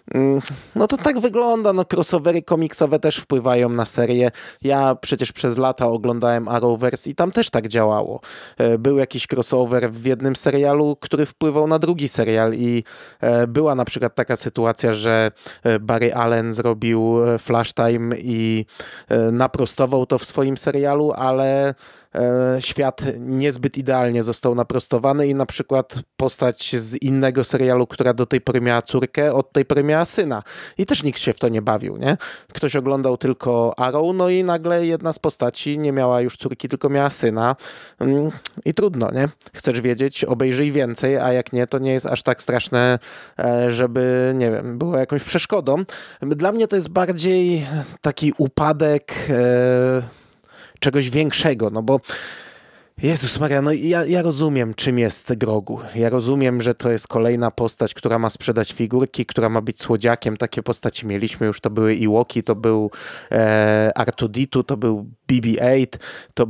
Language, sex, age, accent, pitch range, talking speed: Polish, male, 20-39, native, 120-145 Hz, 155 wpm